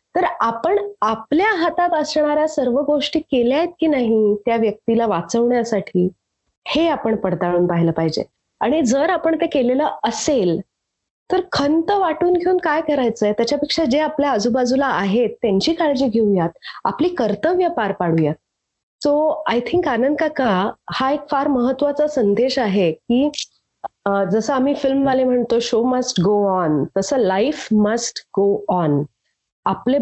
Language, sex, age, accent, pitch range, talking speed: Marathi, female, 30-49, native, 205-285 Hz, 140 wpm